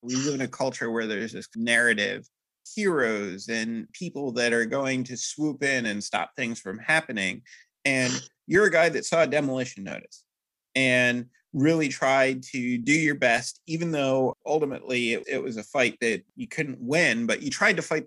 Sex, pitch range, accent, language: male, 125-160 Hz, American, English